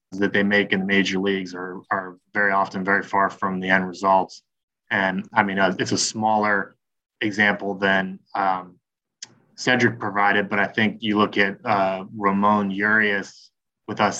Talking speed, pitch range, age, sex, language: 170 wpm, 100-115 Hz, 20-39, male, English